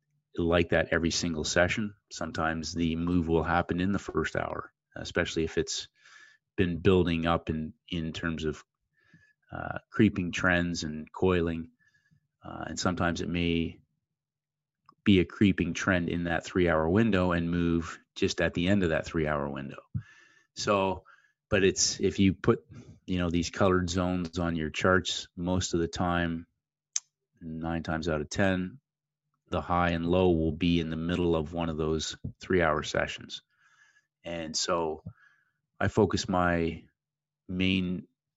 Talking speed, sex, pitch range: 150 wpm, male, 85-100 Hz